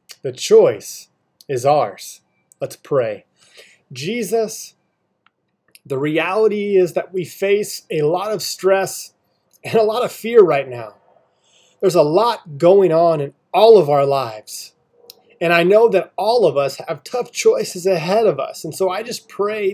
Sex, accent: male, American